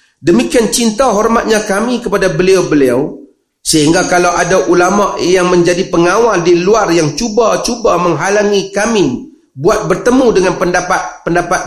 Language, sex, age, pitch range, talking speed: Malay, male, 40-59, 160-215 Hz, 120 wpm